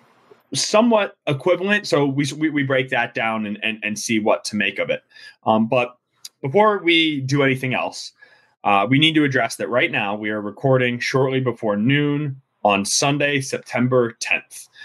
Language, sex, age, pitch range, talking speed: English, male, 20-39, 110-140 Hz, 170 wpm